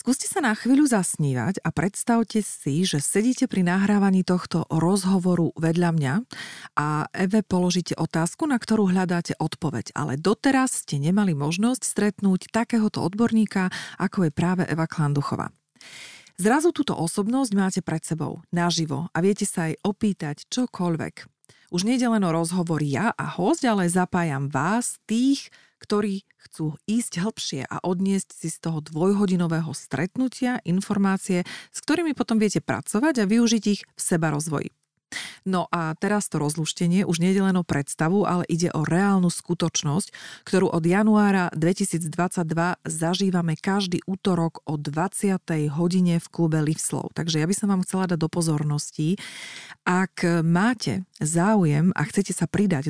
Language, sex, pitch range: Slovak, female, 160-205 Hz